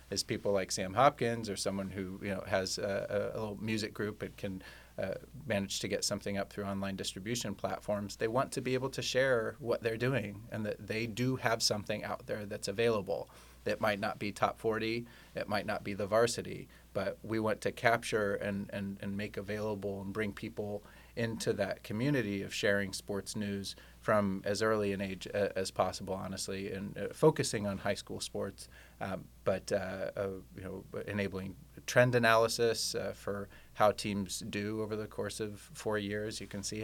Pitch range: 100-110 Hz